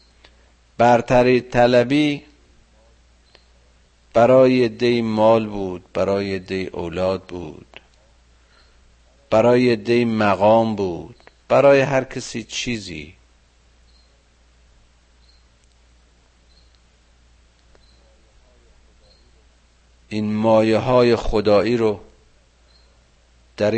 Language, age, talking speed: Persian, 50-69, 60 wpm